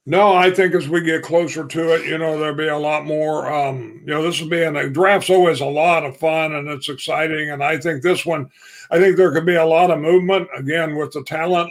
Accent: American